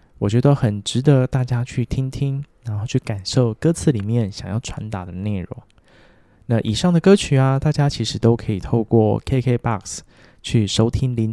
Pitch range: 105-135 Hz